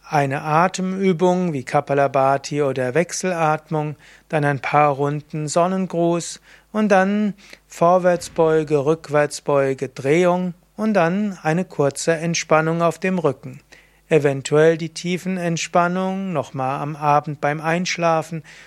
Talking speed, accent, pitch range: 105 wpm, German, 150-180 Hz